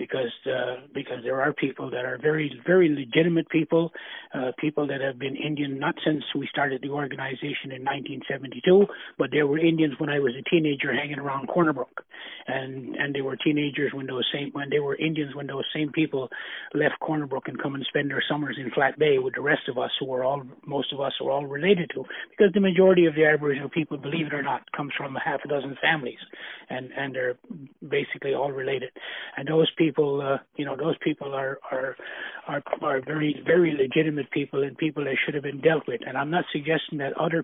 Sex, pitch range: male, 135-155 Hz